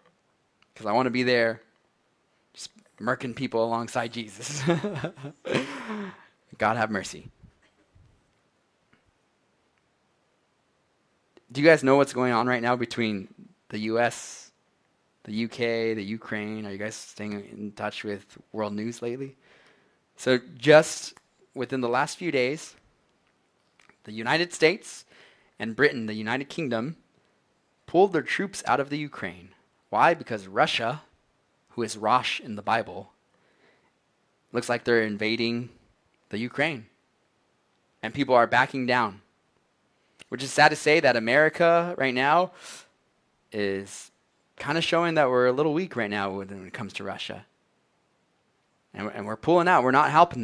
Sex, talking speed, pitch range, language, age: male, 135 wpm, 110-145 Hz, English, 30-49